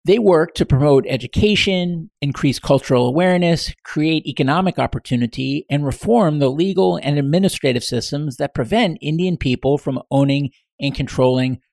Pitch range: 135-180 Hz